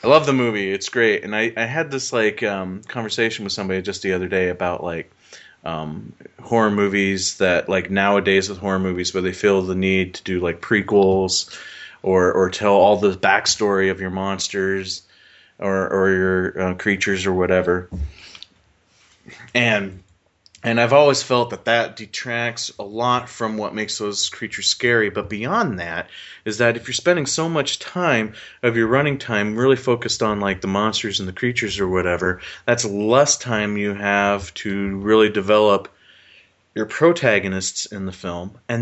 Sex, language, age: male, English, 30-49